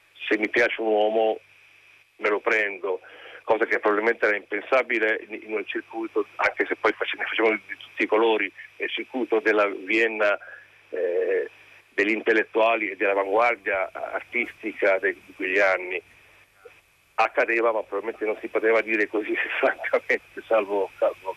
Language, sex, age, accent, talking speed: Italian, male, 50-69, native, 135 wpm